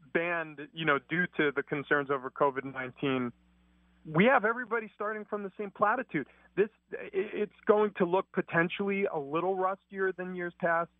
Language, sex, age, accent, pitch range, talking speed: English, male, 30-49, American, 140-180 Hz, 160 wpm